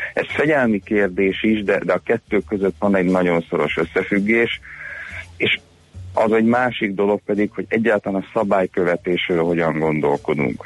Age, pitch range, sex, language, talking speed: 30-49, 85-100 Hz, male, Hungarian, 145 wpm